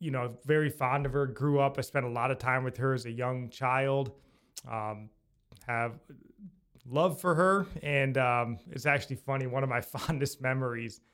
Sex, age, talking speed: male, 20-39, 190 wpm